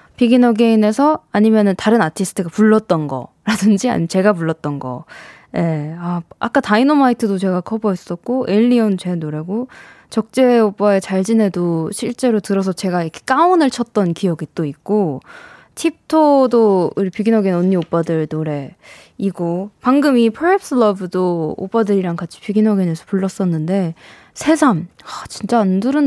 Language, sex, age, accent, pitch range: Korean, female, 20-39, native, 180-250 Hz